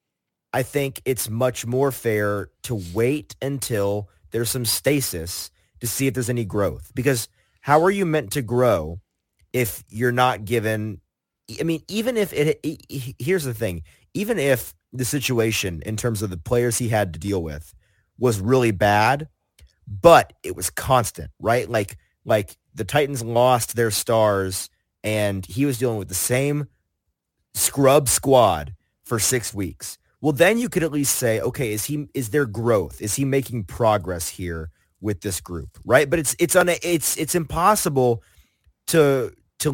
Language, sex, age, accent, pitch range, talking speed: English, male, 30-49, American, 105-145 Hz, 170 wpm